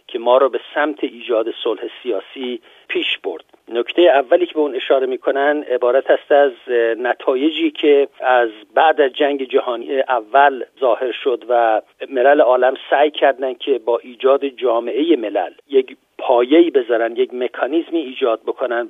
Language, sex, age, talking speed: Persian, male, 50-69, 150 wpm